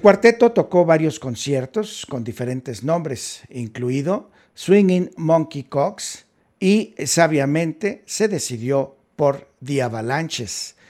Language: Spanish